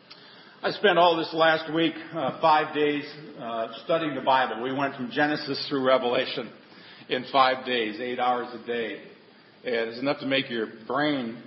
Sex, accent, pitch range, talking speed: male, American, 145-185 Hz, 165 wpm